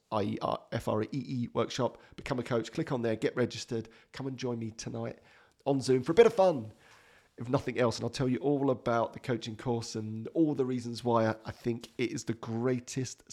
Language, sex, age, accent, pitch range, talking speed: English, male, 40-59, British, 110-135 Hz, 205 wpm